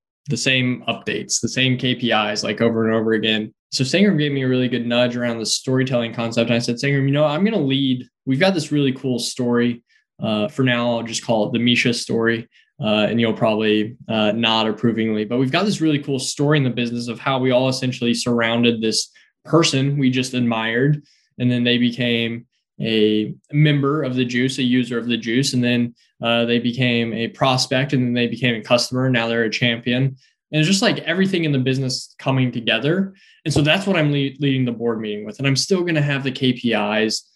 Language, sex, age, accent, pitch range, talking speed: English, male, 10-29, American, 115-140 Hz, 220 wpm